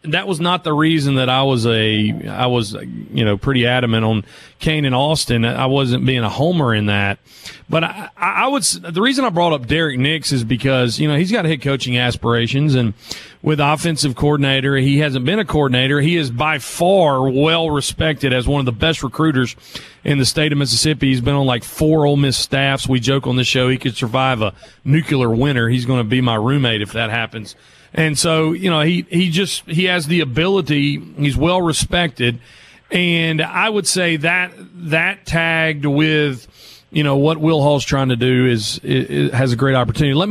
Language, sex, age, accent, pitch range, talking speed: English, male, 40-59, American, 125-160 Hz, 205 wpm